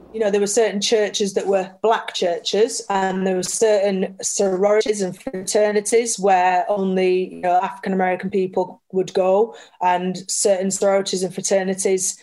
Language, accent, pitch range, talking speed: English, British, 185-215 Hz, 145 wpm